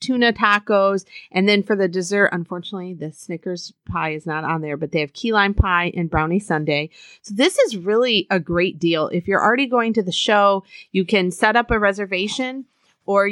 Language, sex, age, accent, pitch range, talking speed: English, female, 30-49, American, 165-205 Hz, 205 wpm